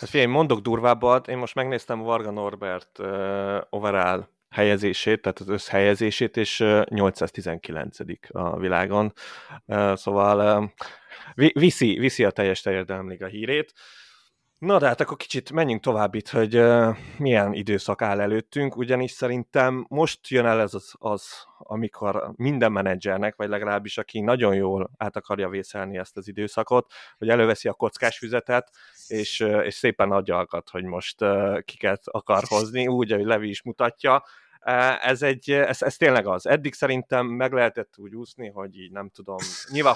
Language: Hungarian